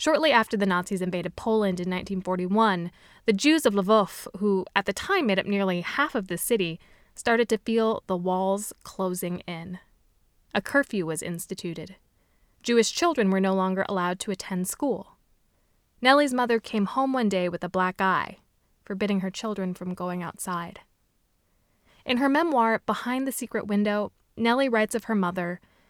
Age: 20-39